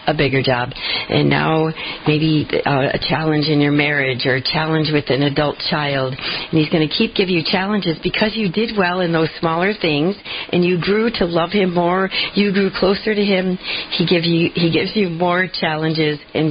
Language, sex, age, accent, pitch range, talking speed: English, female, 50-69, American, 150-185 Hz, 205 wpm